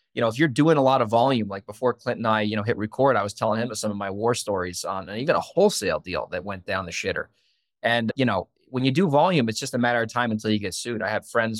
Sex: male